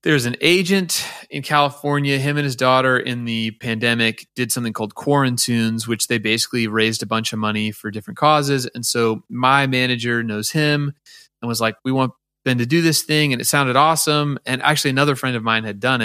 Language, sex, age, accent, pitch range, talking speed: English, male, 30-49, American, 120-150 Hz, 205 wpm